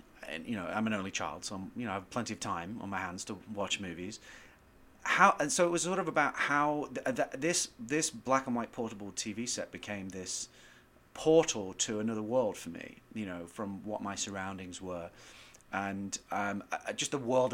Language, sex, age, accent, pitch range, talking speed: English, male, 30-49, British, 95-130 Hz, 210 wpm